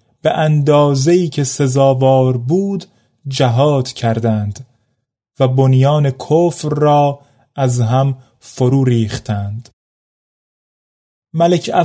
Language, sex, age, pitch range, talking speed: Persian, male, 30-49, 125-165 Hz, 80 wpm